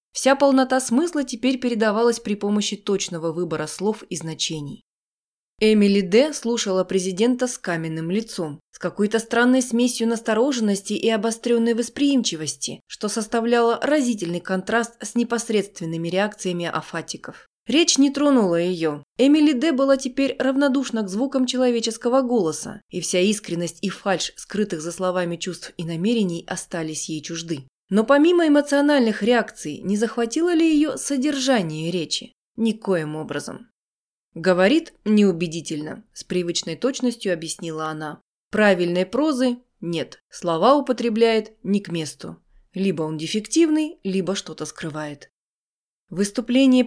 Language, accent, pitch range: Russian, native, 175-245 Hz